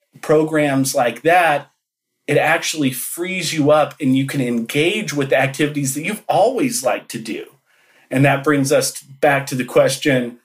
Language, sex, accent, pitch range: English, male, American, 130-165 Hz